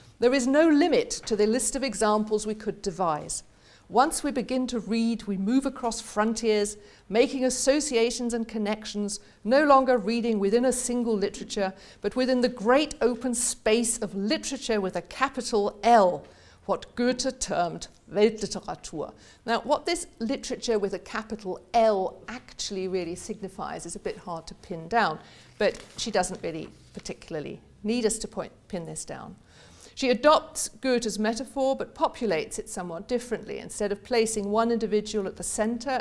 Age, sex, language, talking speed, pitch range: 50-69, female, English, 155 wpm, 185-240 Hz